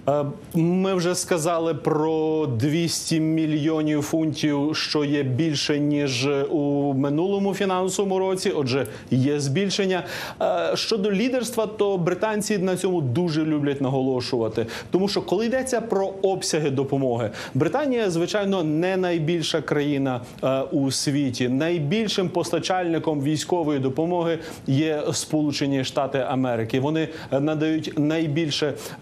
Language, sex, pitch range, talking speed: Ukrainian, male, 145-180 Hz, 110 wpm